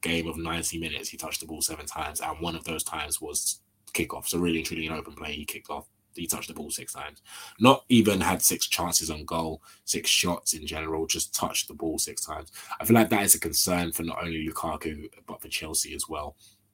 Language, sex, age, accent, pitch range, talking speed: English, male, 20-39, British, 80-100 Hz, 235 wpm